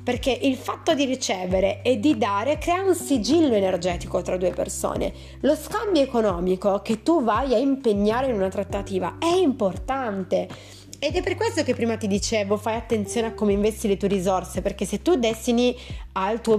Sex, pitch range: female, 190-265 Hz